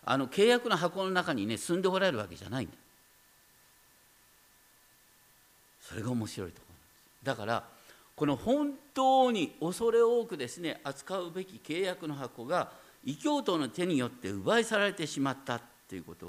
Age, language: 50-69, Japanese